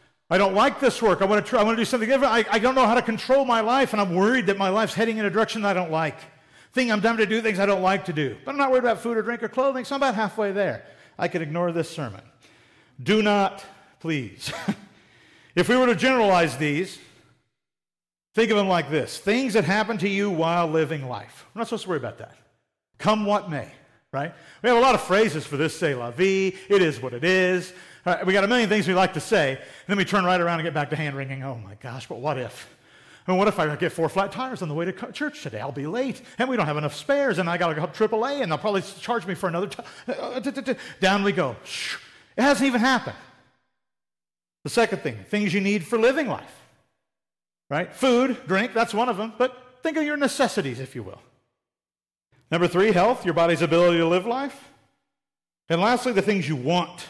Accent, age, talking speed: American, 50-69, 240 wpm